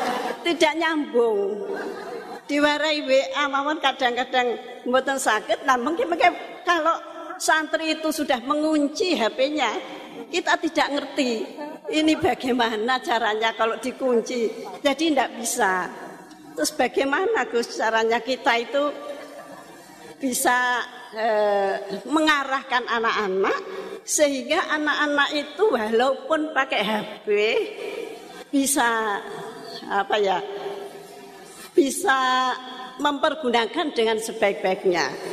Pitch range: 240-315 Hz